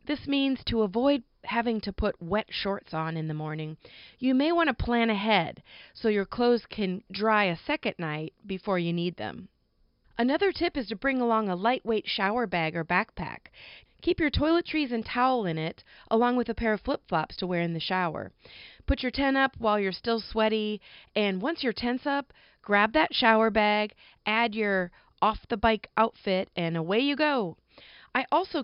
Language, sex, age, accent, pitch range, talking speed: English, female, 40-59, American, 180-255 Hz, 185 wpm